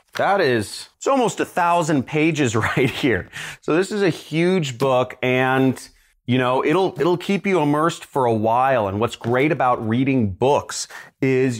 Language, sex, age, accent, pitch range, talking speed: English, male, 30-49, American, 110-140 Hz, 170 wpm